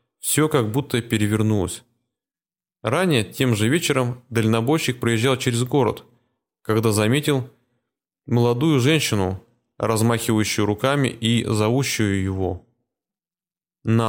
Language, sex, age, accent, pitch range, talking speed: Russian, male, 20-39, native, 110-130 Hz, 95 wpm